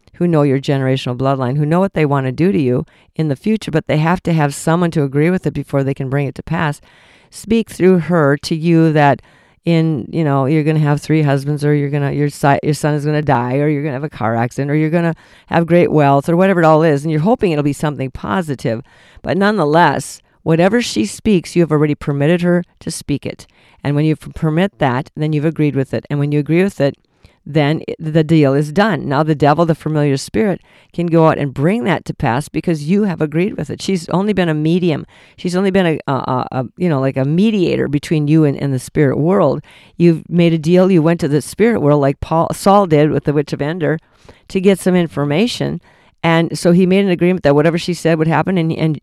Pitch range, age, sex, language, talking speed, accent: 145-175 Hz, 50-69, female, English, 245 wpm, American